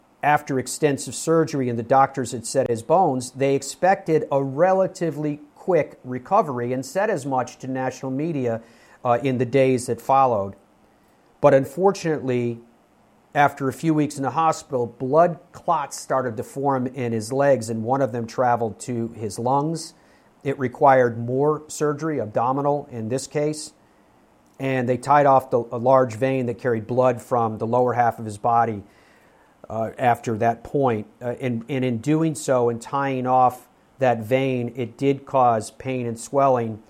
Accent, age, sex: American, 40-59, male